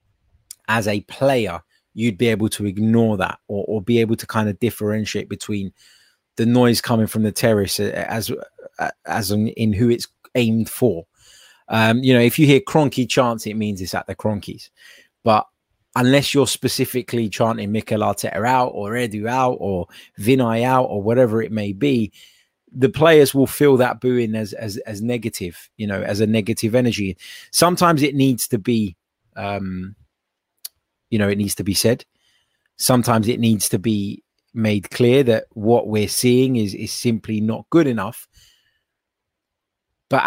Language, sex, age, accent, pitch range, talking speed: English, male, 20-39, British, 105-125 Hz, 165 wpm